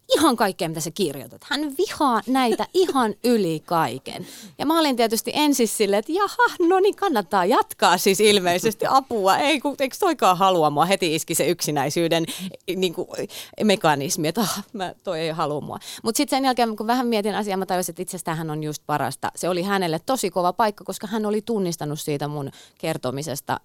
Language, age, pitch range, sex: Finnish, 30-49, 160-225 Hz, female